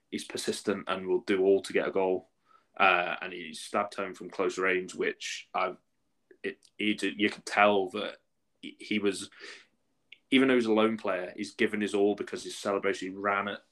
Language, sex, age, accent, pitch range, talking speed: English, male, 20-39, British, 95-110 Hz, 190 wpm